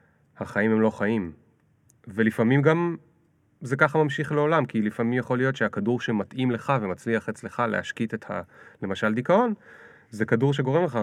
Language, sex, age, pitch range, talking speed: Hebrew, male, 30-49, 100-135 Hz, 150 wpm